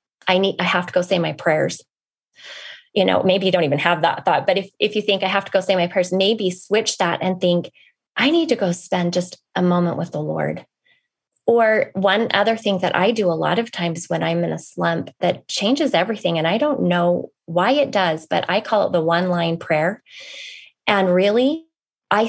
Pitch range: 180-220 Hz